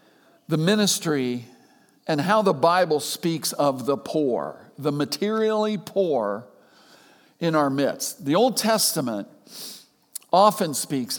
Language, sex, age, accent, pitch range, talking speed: English, male, 50-69, American, 145-205 Hz, 115 wpm